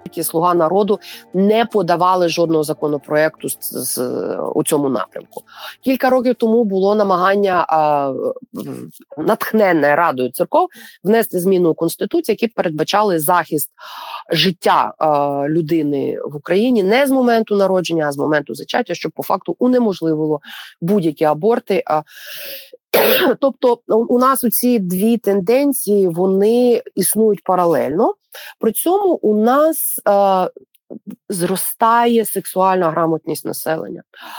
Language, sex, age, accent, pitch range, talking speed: Ukrainian, female, 30-49, native, 170-230 Hz, 115 wpm